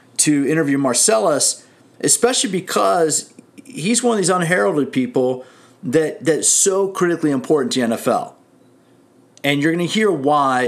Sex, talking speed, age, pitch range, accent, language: male, 140 wpm, 40-59, 130-165 Hz, American, English